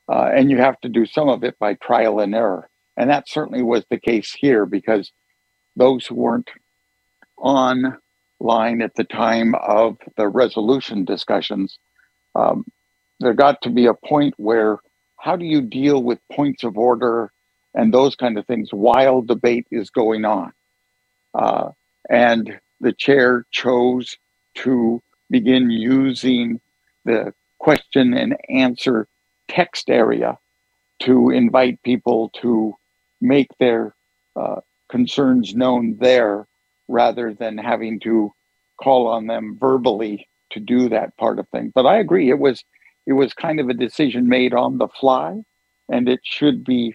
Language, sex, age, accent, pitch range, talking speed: English, male, 60-79, American, 115-130 Hz, 145 wpm